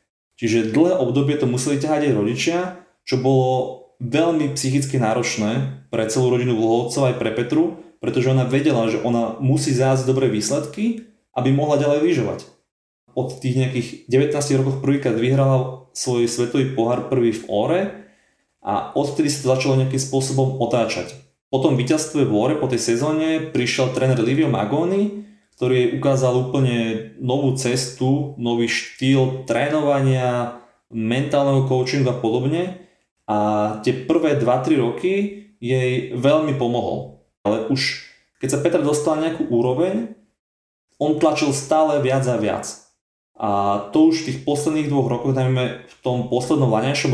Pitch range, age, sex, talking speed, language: 120-145 Hz, 30-49, male, 145 wpm, Slovak